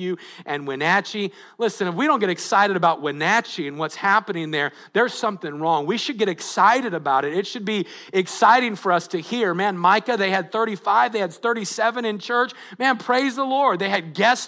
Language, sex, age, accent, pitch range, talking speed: English, male, 40-59, American, 160-220 Hz, 200 wpm